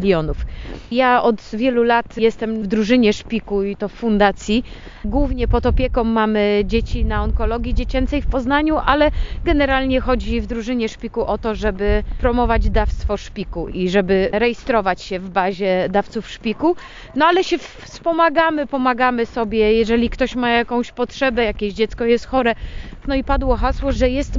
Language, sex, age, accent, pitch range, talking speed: Polish, female, 30-49, native, 220-260 Hz, 155 wpm